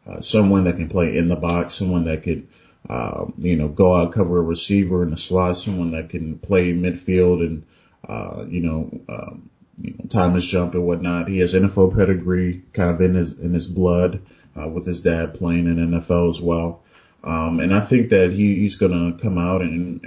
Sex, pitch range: male, 85-95 Hz